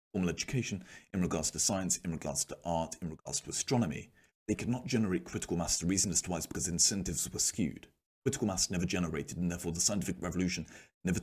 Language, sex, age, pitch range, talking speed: English, male, 30-49, 80-95 Hz, 205 wpm